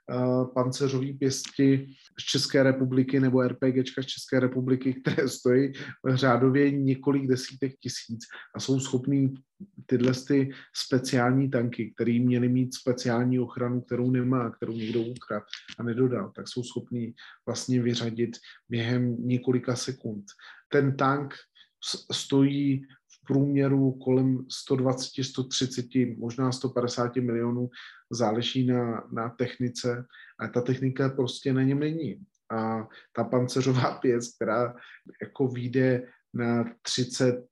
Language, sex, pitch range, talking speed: Slovak, male, 120-130 Hz, 115 wpm